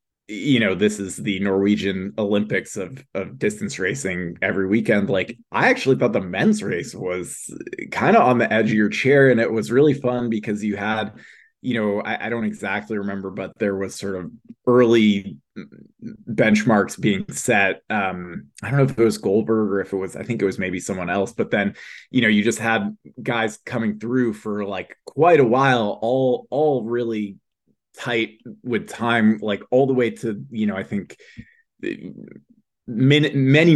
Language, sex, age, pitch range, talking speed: English, male, 20-39, 100-120 Hz, 185 wpm